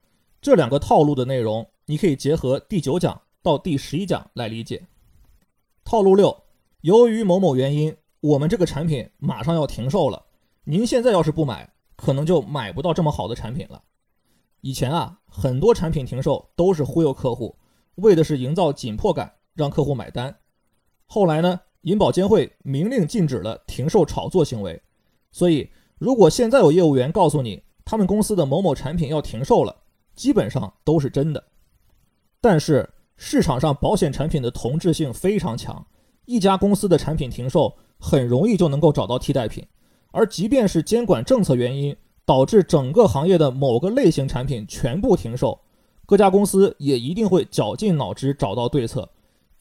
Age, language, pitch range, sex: 20-39, Chinese, 135-185 Hz, male